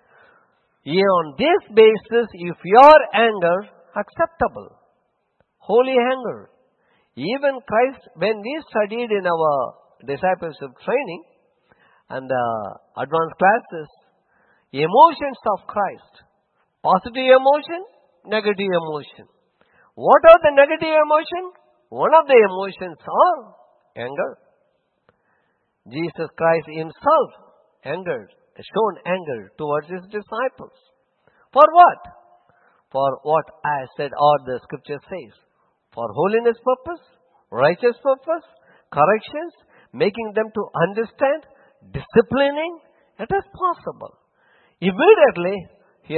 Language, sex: English, male